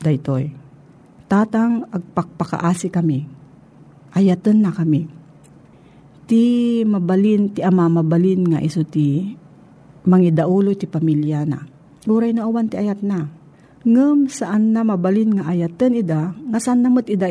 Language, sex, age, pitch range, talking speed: Filipino, female, 50-69, 155-205 Hz, 120 wpm